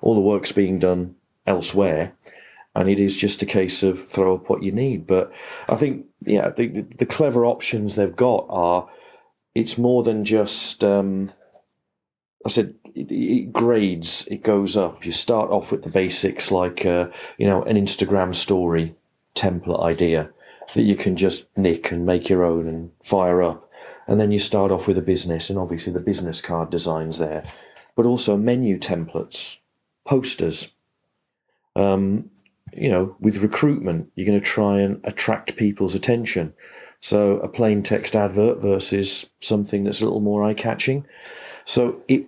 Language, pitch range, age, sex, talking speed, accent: English, 90-105 Hz, 40-59, male, 165 wpm, British